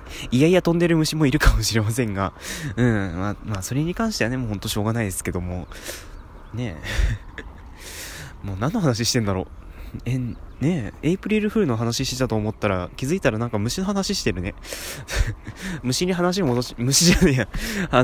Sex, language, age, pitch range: male, Japanese, 20-39, 95-150 Hz